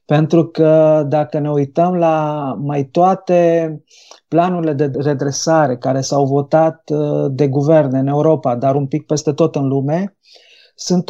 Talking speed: 140 wpm